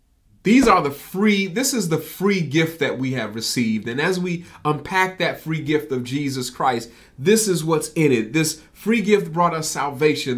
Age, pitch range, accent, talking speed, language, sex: 30-49, 125-170 Hz, American, 195 wpm, English, male